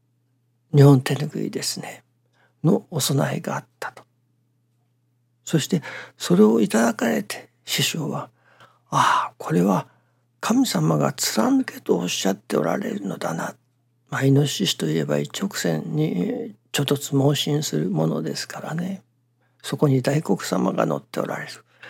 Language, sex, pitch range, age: Japanese, male, 120-150 Hz, 60-79